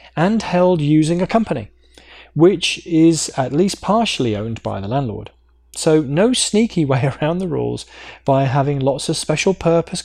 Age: 20-39